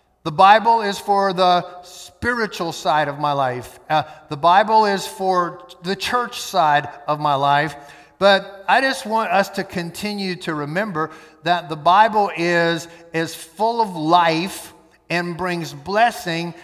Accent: American